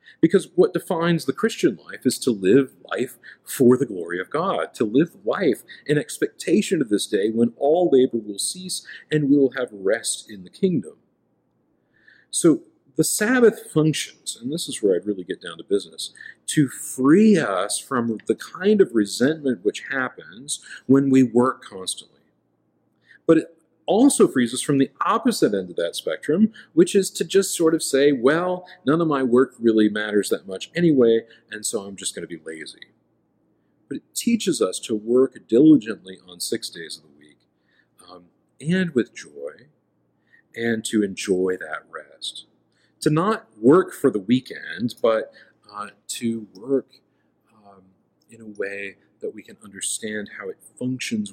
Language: English